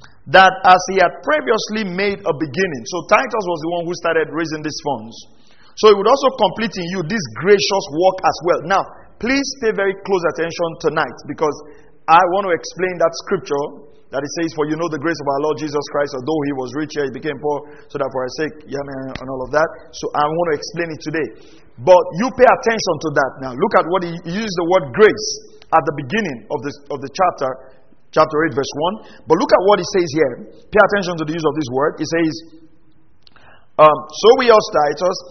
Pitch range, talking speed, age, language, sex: 150-195 Hz, 225 wpm, 40-59, English, male